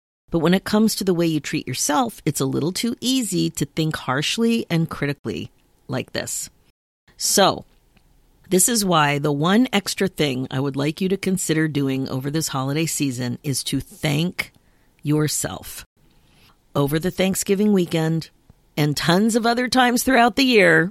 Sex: female